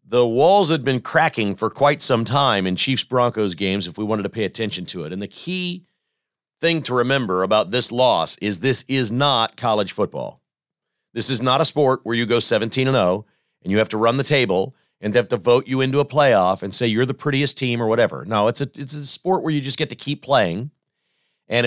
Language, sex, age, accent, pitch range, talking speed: English, male, 40-59, American, 115-150 Hz, 225 wpm